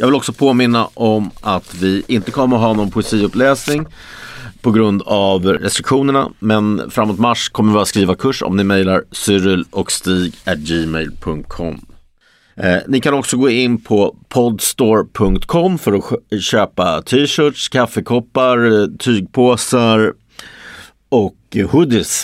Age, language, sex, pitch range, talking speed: 50-69, Swedish, male, 95-120 Hz, 125 wpm